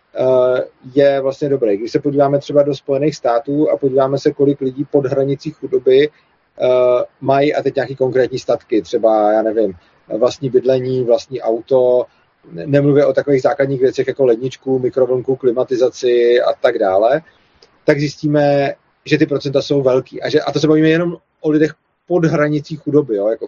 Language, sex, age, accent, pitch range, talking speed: Czech, male, 30-49, native, 135-155 Hz, 165 wpm